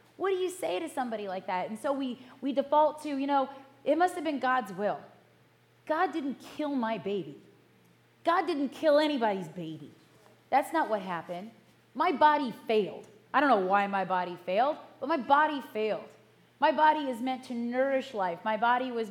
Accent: American